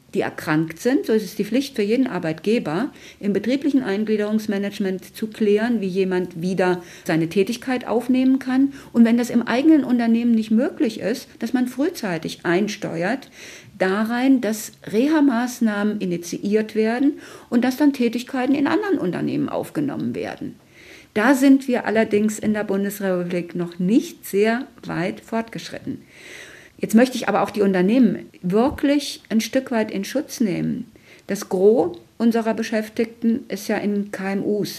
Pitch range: 200-255 Hz